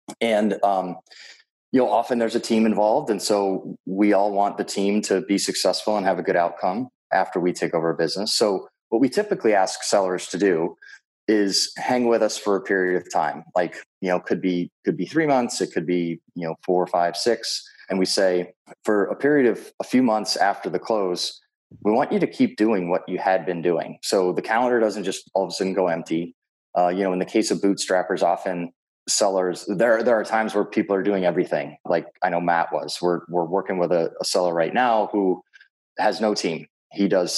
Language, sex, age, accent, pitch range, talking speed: English, male, 30-49, American, 90-110 Hz, 220 wpm